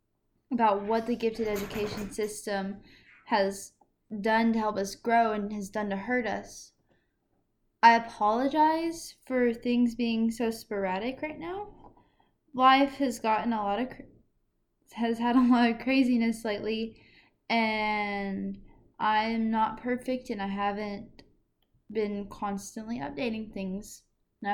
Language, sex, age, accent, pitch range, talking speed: English, female, 10-29, American, 210-245 Hz, 125 wpm